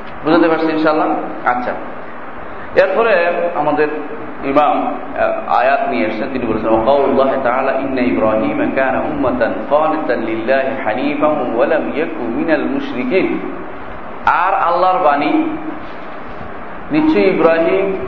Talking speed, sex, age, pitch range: 35 wpm, male, 40-59, 125-165 Hz